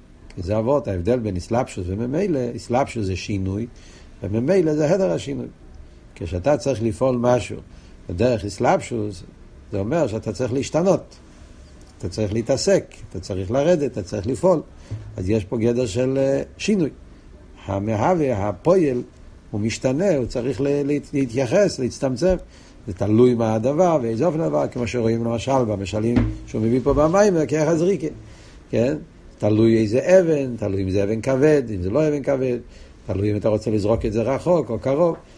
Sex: male